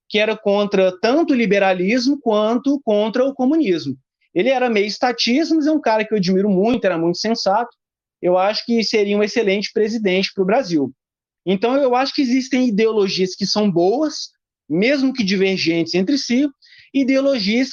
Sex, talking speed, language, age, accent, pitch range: male, 170 wpm, Portuguese, 20-39, Brazilian, 185-240 Hz